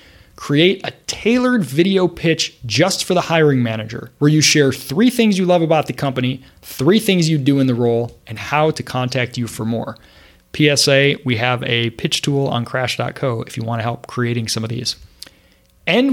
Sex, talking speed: male, 195 wpm